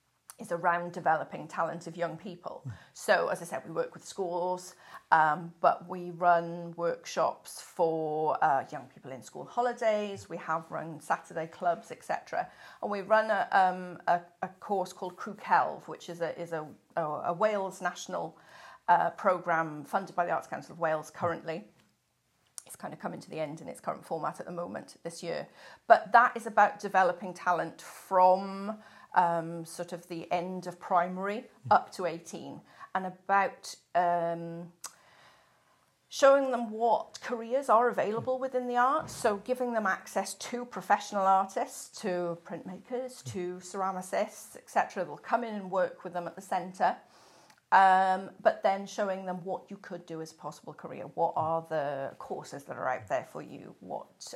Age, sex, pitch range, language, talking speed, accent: 40-59, female, 170-205 Hz, English, 170 wpm, British